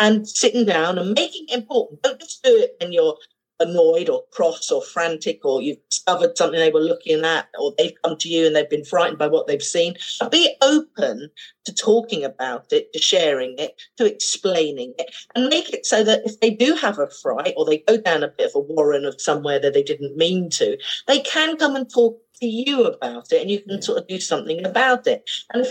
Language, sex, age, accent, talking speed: English, female, 40-59, British, 230 wpm